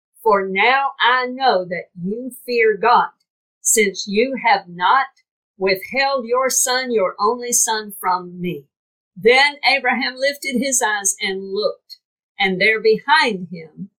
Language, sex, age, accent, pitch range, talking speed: English, female, 50-69, American, 195-275 Hz, 135 wpm